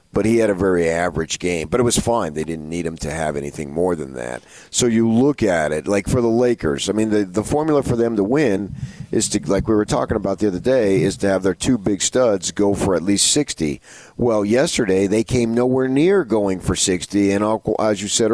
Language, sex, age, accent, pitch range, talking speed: English, male, 40-59, American, 95-125 Hz, 240 wpm